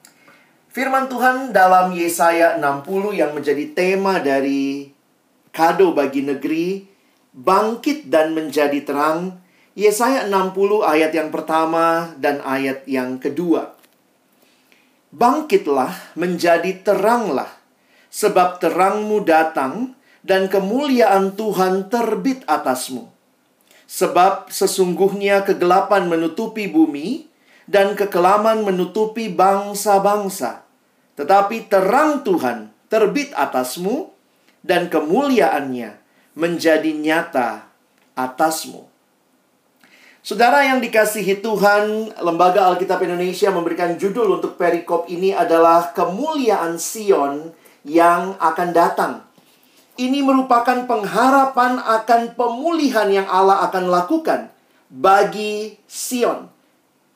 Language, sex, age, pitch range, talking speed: Indonesian, male, 40-59, 170-225 Hz, 90 wpm